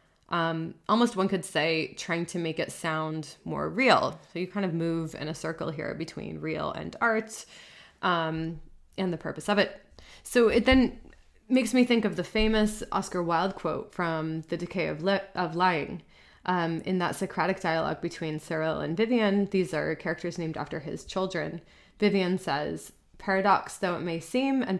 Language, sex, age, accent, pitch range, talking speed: English, female, 20-39, American, 160-195 Hz, 175 wpm